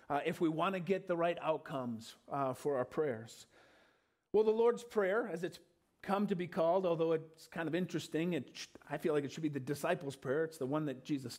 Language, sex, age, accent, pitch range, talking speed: English, male, 40-59, American, 140-180 Hz, 220 wpm